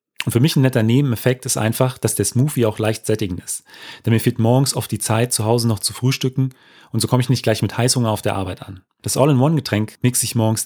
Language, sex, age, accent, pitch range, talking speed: German, male, 30-49, German, 105-130 Hz, 250 wpm